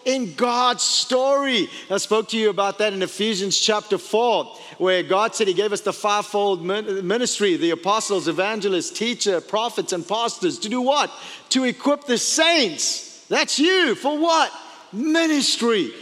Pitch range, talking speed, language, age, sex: 225-290 Hz, 155 wpm, English, 40-59, male